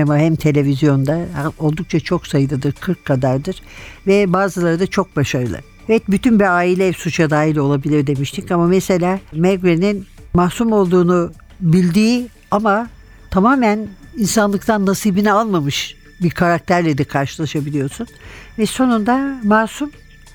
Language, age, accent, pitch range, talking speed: Turkish, 60-79, native, 155-215 Hz, 115 wpm